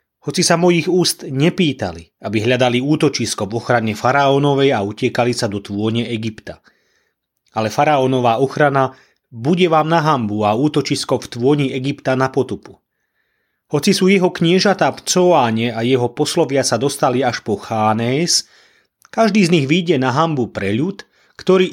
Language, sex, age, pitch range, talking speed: Slovak, male, 30-49, 120-155 Hz, 145 wpm